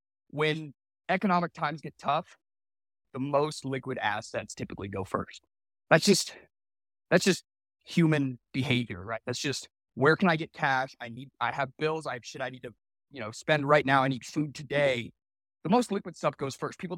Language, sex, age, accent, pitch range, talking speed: English, male, 30-49, American, 120-160 Hz, 185 wpm